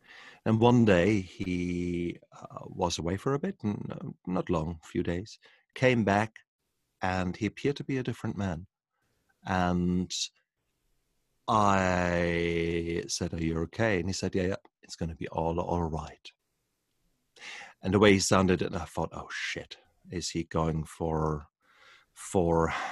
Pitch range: 85-105 Hz